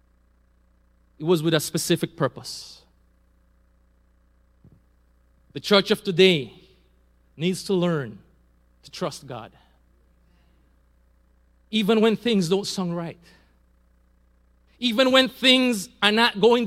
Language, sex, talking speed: English, male, 100 wpm